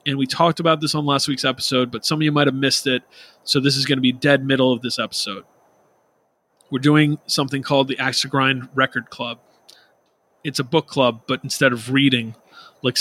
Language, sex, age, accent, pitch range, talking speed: English, male, 30-49, American, 130-160 Hz, 215 wpm